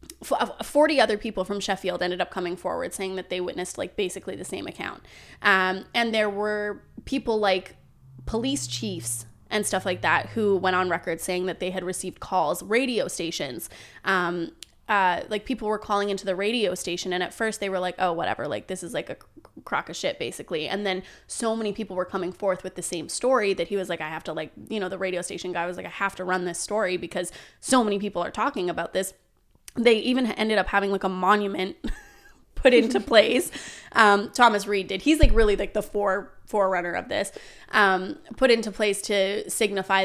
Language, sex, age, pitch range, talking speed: English, female, 20-39, 180-215 Hz, 210 wpm